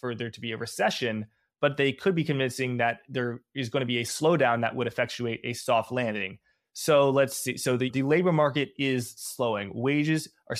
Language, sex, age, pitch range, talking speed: English, male, 20-39, 120-145 Hz, 210 wpm